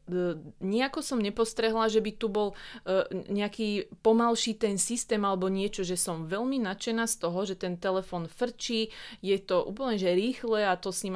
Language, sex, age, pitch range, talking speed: English, female, 30-49, 175-210 Hz, 175 wpm